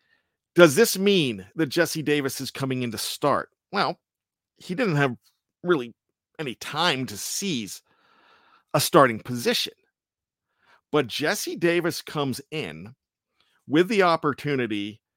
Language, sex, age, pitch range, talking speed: English, male, 50-69, 130-180 Hz, 125 wpm